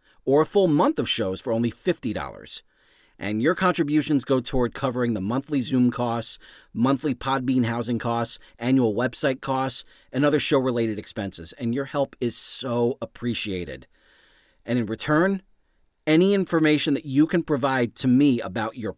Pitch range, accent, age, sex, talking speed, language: 115-145 Hz, American, 40-59, male, 160 wpm, English